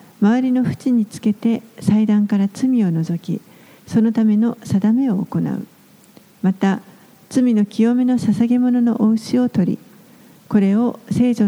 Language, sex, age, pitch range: Japanese, female, 50-69, 200-235 Hz